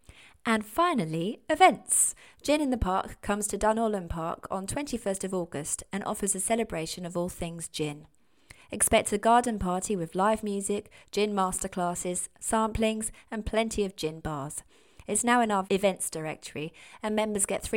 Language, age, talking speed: English, 30-49, 160 wpm